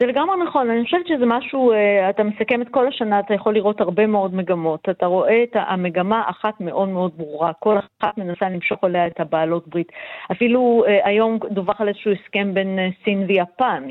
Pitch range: 190-250 Hz